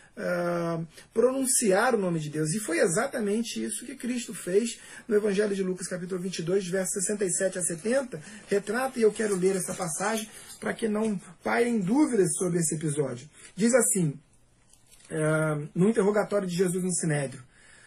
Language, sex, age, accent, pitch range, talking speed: Portuguese, male, 40-59, Brazilian, 170-230 Hz, 150 wpm